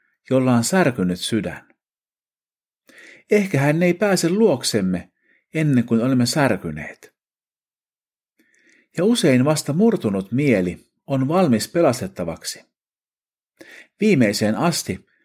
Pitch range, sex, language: 105-180 Hz, male, Finnish